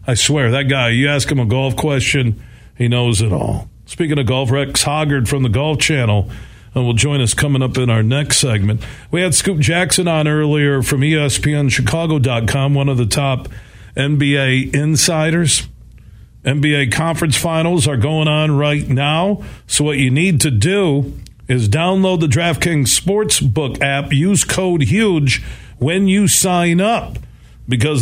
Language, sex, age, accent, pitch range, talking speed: English, male, 50-69, American, 125-160 Hz, 160 wpm